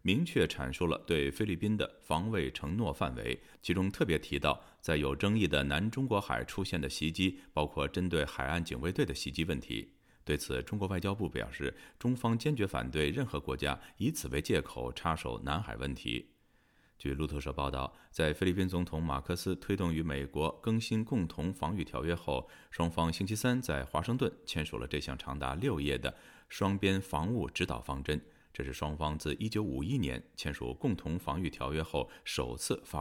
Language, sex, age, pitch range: Chinese, male, 30-49, 70-95 Hz